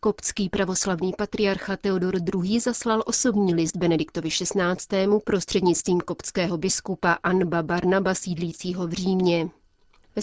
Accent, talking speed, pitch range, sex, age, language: native, 110 wpm, 175-195 Hz, female, 30-49, Czech